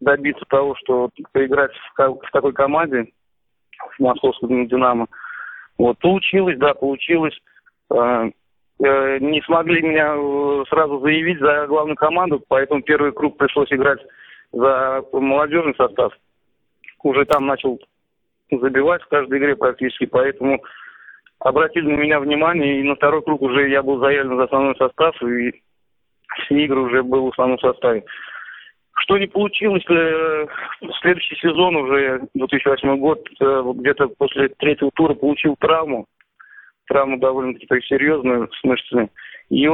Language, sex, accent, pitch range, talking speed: Russian, male, native, 130-150 Hz, 125 wpm